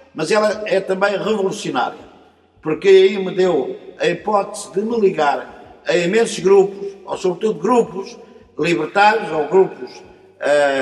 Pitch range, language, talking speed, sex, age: 180-235 Hz, Portuguese, 135 wpm, male, 50-69